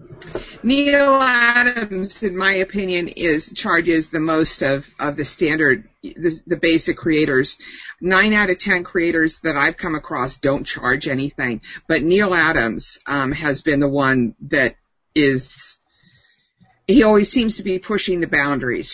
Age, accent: 50-69, American